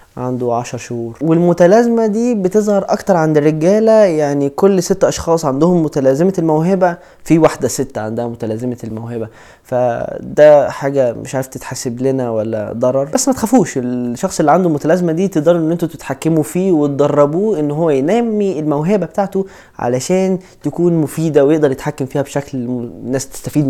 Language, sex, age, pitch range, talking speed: Arabic, male, 20-39, 130-185 Hz, 145 wpm